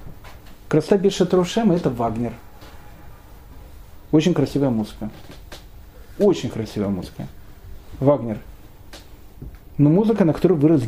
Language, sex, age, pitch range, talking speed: Russian, male, 40-59, 110-180 Hz, 90 wpm